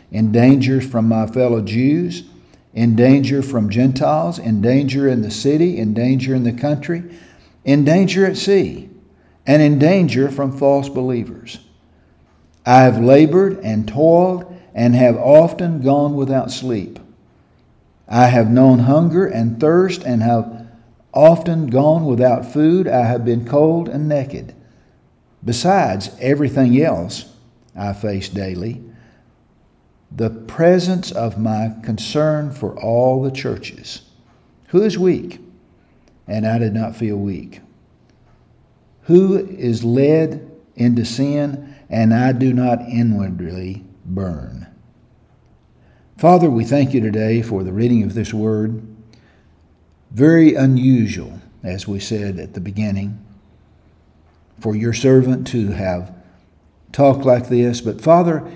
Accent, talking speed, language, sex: American, 125 wpm, English, male